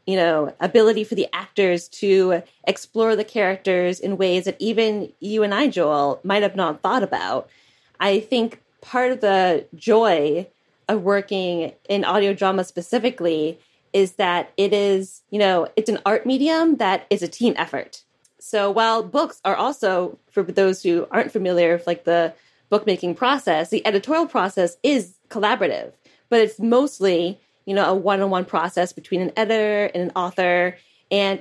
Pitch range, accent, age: 180-220 Hz, American, 20-39